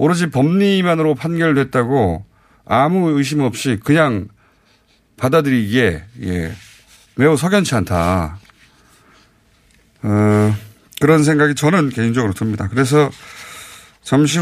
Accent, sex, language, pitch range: native, male, Korean, 100-145 Hz